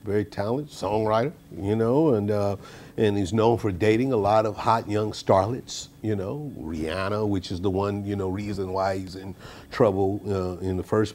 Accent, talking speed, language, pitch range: American, 195 wpm, English, 95-130 Hz